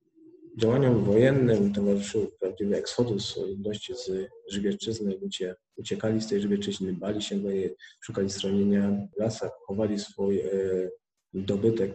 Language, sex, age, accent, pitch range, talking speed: Polish, male, 40-59, native, 100-115 Hz, 105 wpm